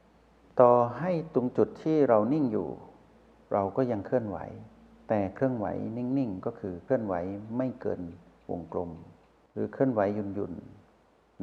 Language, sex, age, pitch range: Thai, male, 60-79, 100-130 Hz